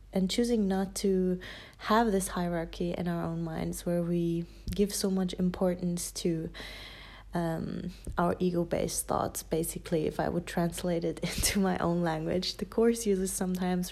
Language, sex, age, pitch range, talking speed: English, female, 20-39, 175-195 Hz, 160 wpm